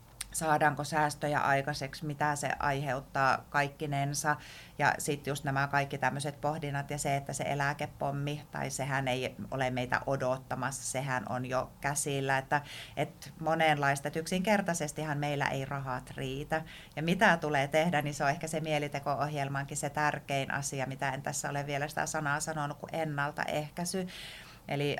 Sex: female